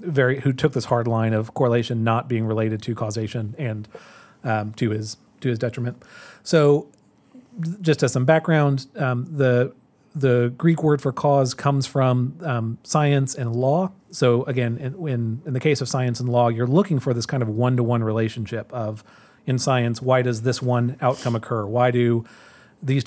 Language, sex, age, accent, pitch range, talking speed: English, male, 40-59, American, 115-140 Hz, 185 wpm